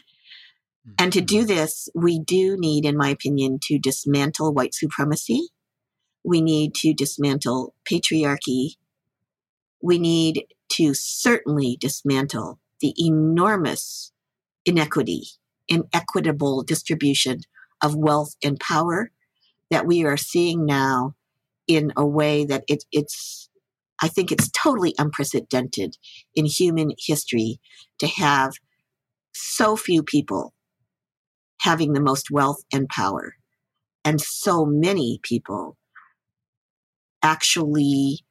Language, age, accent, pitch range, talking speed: English, 50-69, American, 135-160 Hz, 105 wpm